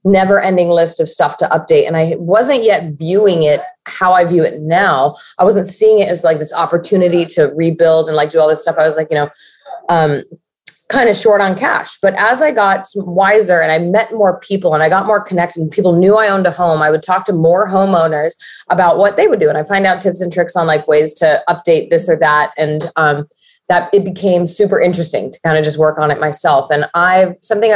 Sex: female